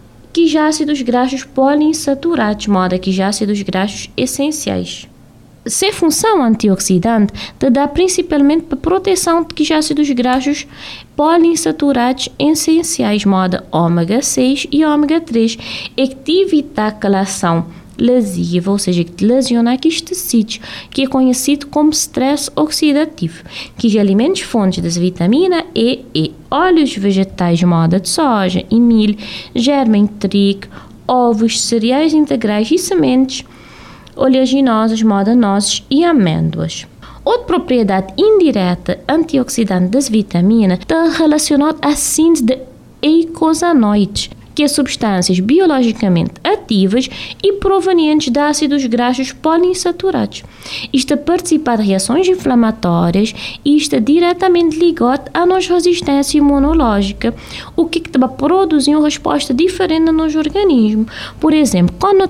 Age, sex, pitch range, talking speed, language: 20-39, female, 210-320 Hz, 125 wpm, Portuguese